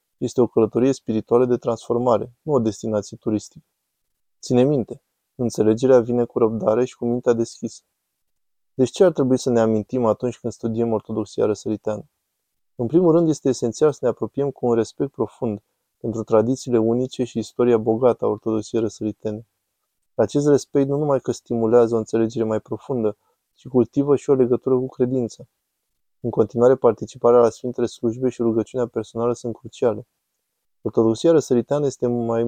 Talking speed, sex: 155 wpm, male